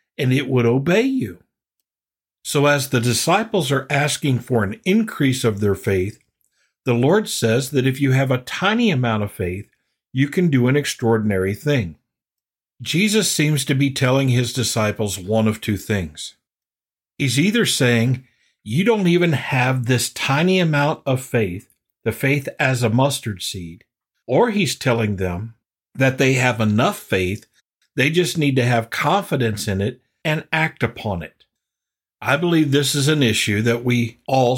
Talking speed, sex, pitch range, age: 165 wpm, male, 110-140 Hz, 50-69